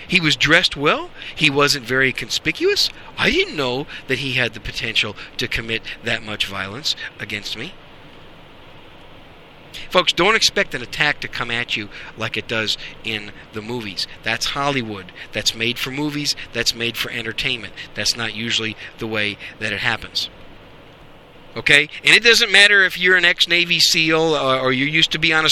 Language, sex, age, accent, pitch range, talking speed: English, male, 50-69, American, 115-160 Hz, 170 wpm